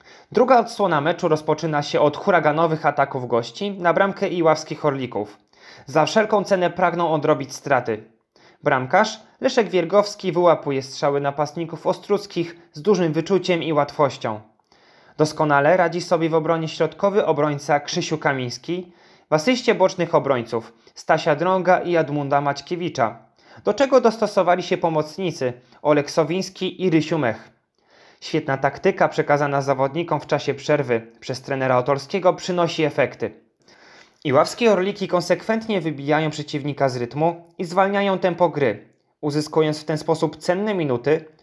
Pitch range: 145-180 Hz